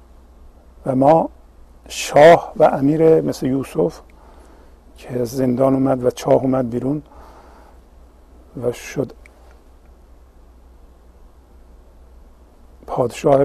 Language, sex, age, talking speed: Persian, male, 50-69, 75 wpm